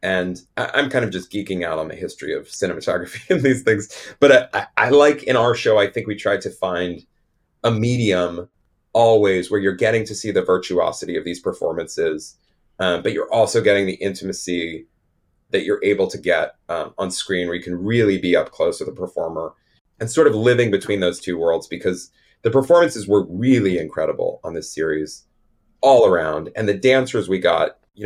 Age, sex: 30-49, male